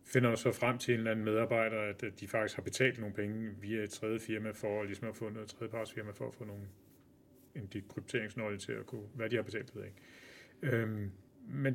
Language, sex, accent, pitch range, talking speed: Danish, male, native, 110-130 Hz, 180 wpm